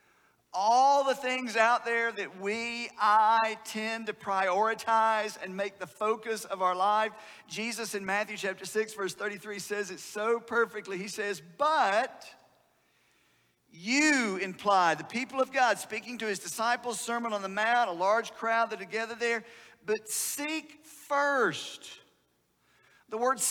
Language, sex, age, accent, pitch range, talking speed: English, male, 50-69, American, 200-250 Hz, 150 wpm